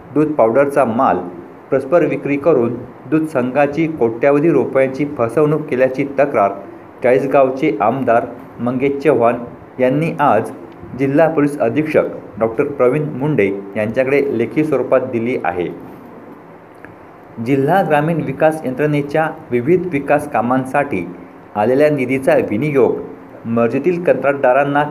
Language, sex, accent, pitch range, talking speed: Marathi, male, native, 120-150 Hz, 100 wpm